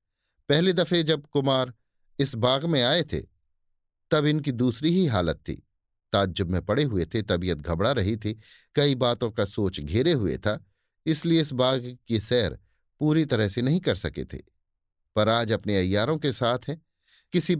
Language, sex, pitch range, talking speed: Hindi, male, 100-145 Hz, 175 wpm